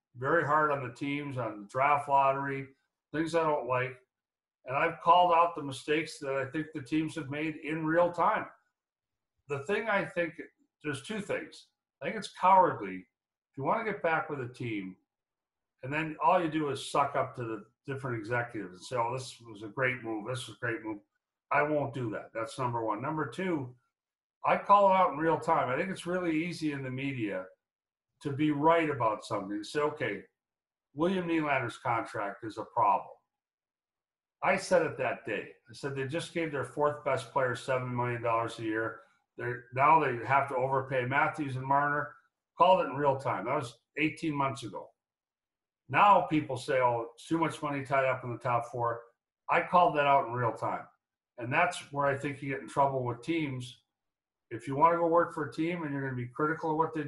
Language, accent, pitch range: English, American, 125-160 Hz